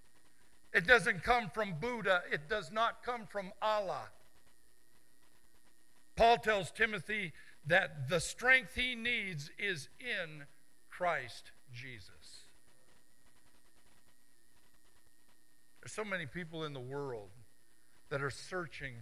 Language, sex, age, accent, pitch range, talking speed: English, male, 60-79, American, 135-190 Hz, 105 wpm